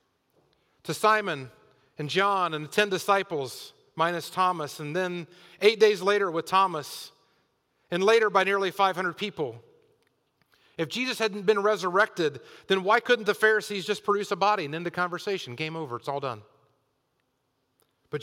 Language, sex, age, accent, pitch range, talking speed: English, male, 40-59, American, 155-205 Hz, 155 wpm